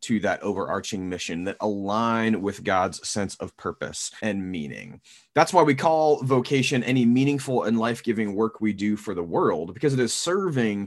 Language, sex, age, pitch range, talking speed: English, male, 20-39, 105-130 Hz, 175 wpm